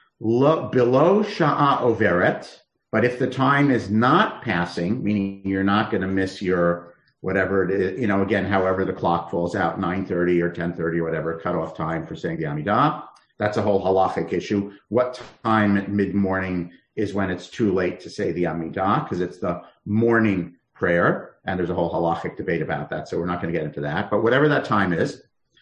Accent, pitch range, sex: American, 100-145 Hz, male